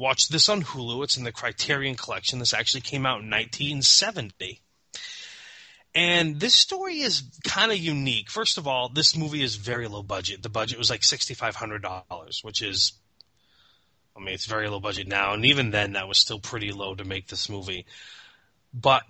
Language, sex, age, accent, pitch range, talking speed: English, male, 20-39, American, 105-135 Hz, 180 wpm